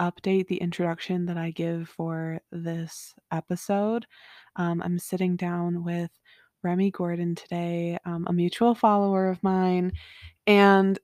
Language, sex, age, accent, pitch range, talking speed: English, female, 20-39, American, 175-200 Hz, 130 wpm